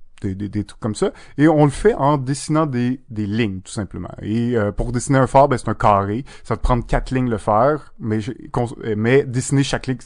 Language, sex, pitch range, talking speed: French, male, 110-135 Hz, 250 wpm